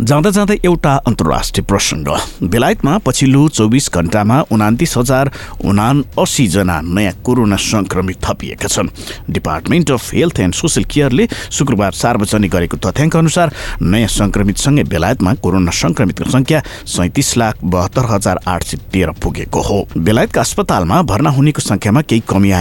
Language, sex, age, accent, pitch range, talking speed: English, male, 60-79, Indian, 95-135 Hz, 100 wpm